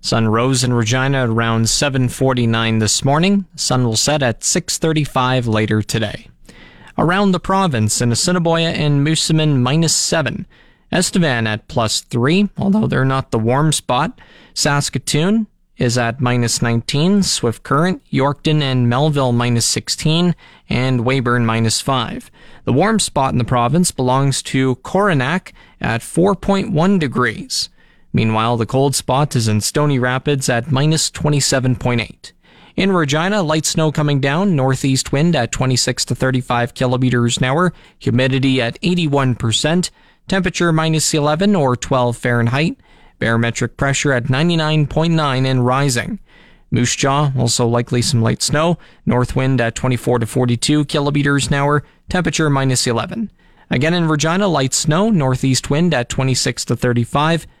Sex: male